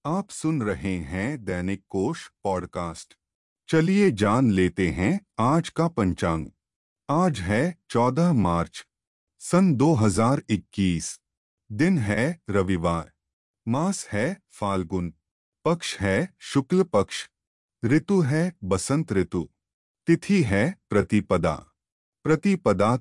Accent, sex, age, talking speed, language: native, male, 30-49, 100 wpm, Hindi